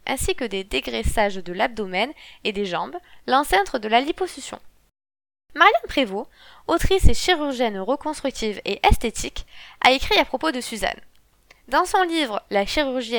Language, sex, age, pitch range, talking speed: French, female, 20-39, 215-310 Hz, 145 wpm